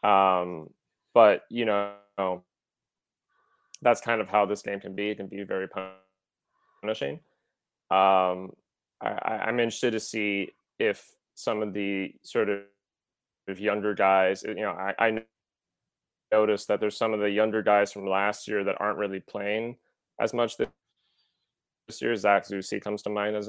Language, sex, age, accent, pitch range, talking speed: English, male, 20-39, American, 95-110 Hz, 150 wpm